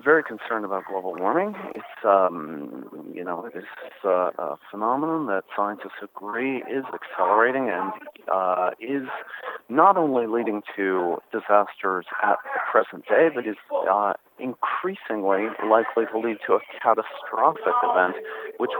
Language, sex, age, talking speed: English, male, 40-59, 130 wpm